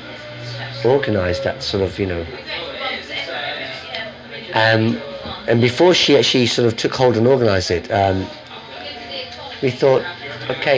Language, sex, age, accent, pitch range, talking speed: English, male, 30-49, British, 100-125 Hz, 120 wpm